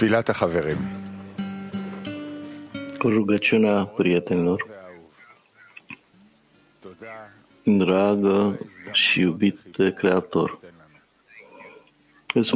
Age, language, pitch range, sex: 50-69, English, 95-115 Hz, male